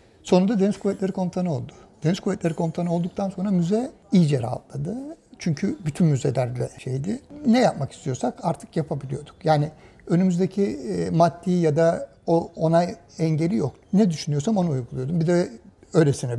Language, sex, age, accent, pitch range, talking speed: Turkish, male, 60-79, native, 140-190 Hz, 140 wpm